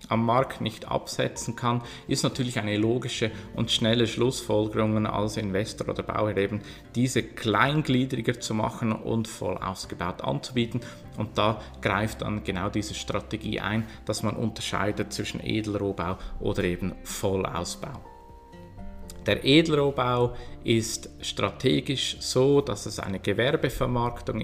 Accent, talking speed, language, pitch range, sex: Austrian, 125 wpm, German, 105-130 Hz, male